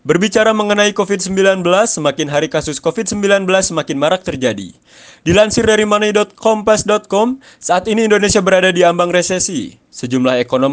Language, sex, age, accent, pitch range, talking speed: Indonesian, male, 20-39, native, 130-185 Hz, 125 wpm